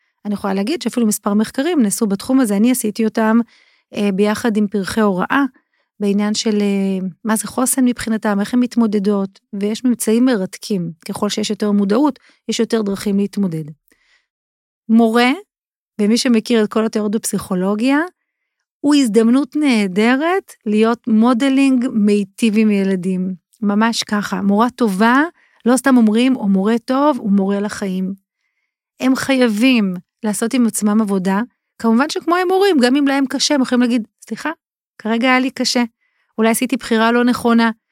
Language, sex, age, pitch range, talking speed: Hebrew, female, 40-59, 210-260 Hz, 140 wpm